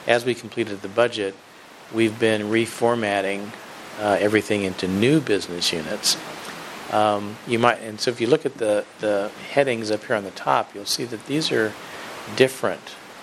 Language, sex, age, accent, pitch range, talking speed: English, male, 50-69, American, 100-115 Hz, 170 wpm